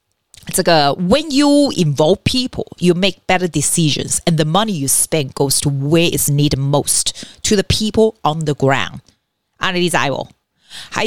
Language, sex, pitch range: Chinese, female, 145-195 Hz